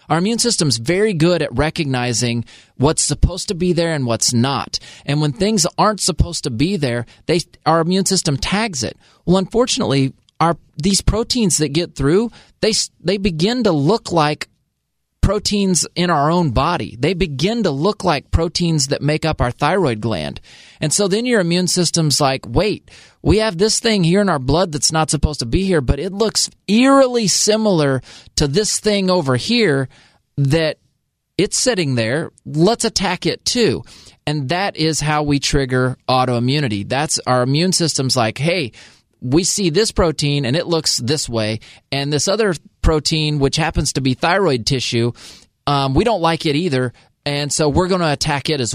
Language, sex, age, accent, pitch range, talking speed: English, male, 30-49, American, 130-175 Hz, 180 wpm